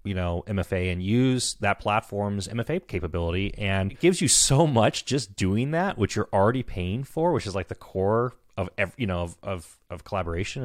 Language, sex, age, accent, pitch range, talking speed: English, male, 30-49, American, 95-125 Hz, 195 wpm